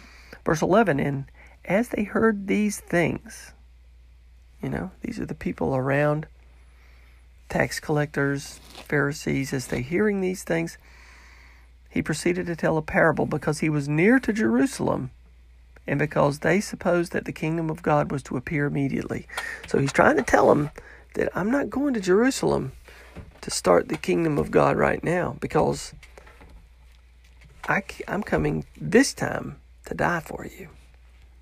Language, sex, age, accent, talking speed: English, male, 40-59, American, 145 wpm